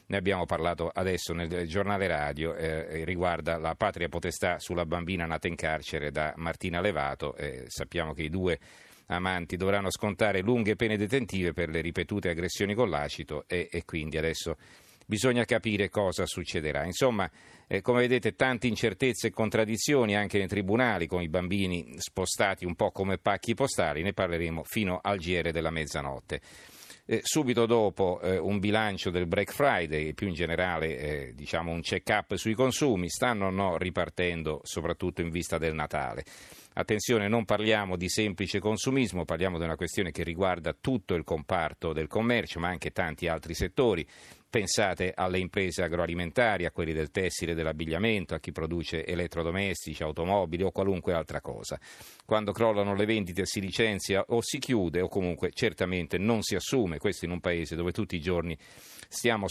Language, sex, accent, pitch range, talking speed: Italian, male, native, 85-105 Hz, 165 wpm